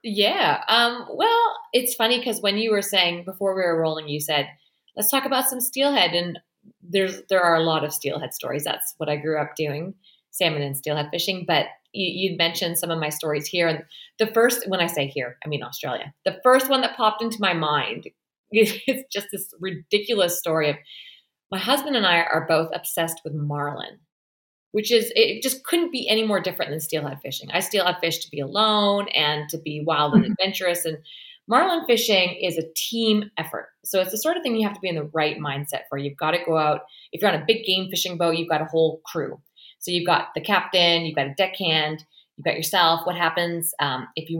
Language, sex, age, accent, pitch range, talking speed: English, female, 30-49, American, 155-210 Hz, 220 wpm